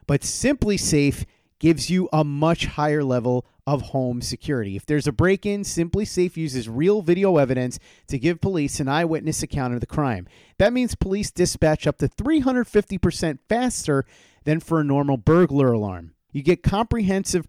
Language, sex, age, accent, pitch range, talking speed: English, male, 40-59, American, 130-180 Hz, 170 wpm